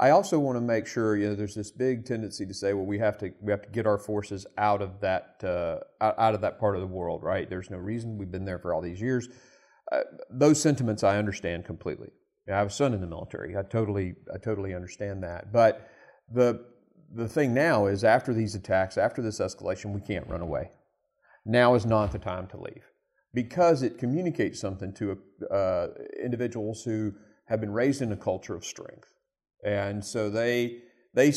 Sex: male